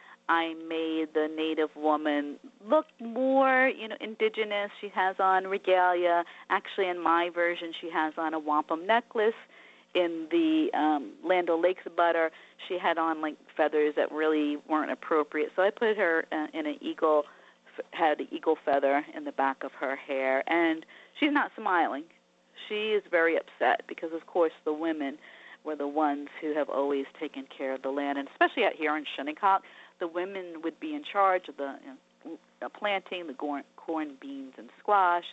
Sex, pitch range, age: female, 150-190 Hz, 40-59